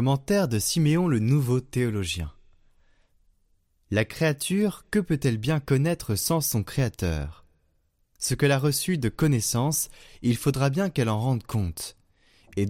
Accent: French